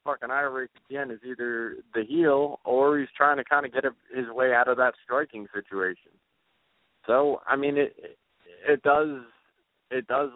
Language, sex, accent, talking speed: English, male, American, 175 wpm